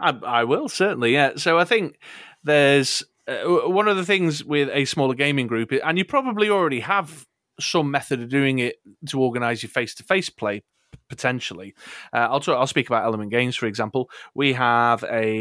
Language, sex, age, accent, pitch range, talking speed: English, male, 30-49, British, 115-140 Hz, 185 wpm